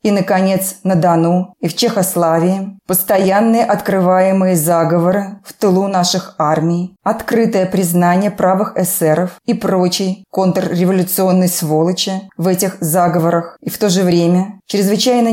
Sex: female